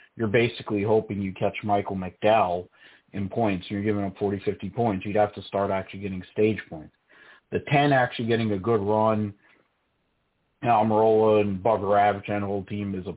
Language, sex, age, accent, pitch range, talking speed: English, male, 30-49, American, 100-110 Hz, 175 wpm